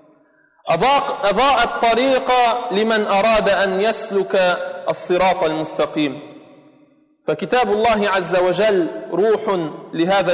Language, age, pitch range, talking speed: Portuguese, 40-59, 195-260 Hz, 80 wpm